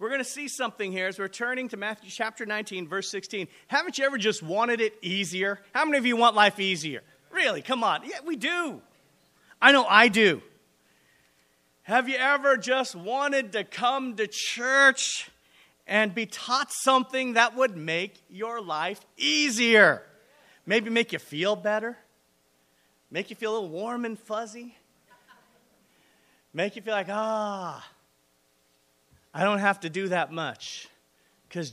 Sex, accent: male, American